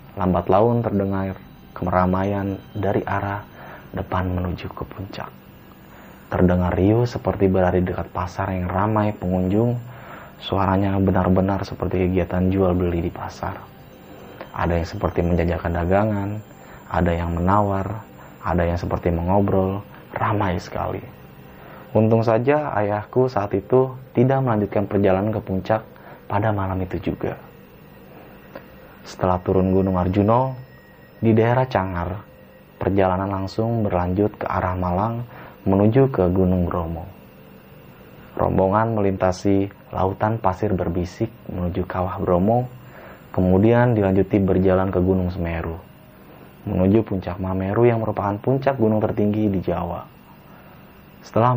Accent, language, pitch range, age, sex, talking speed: native, Indonesian, 90-110 Hz, 20-39, male, 115 wpm